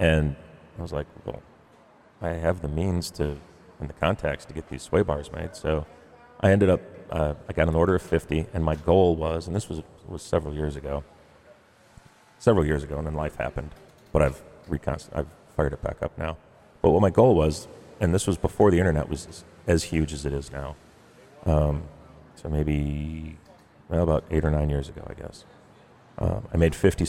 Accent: American